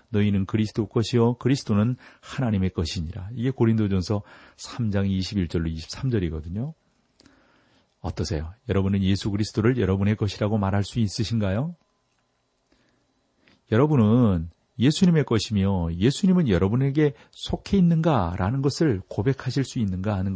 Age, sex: 40-59, male